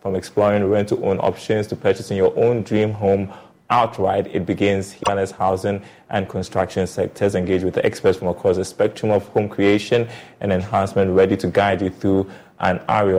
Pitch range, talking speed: 95-105 Hz, 180 wpm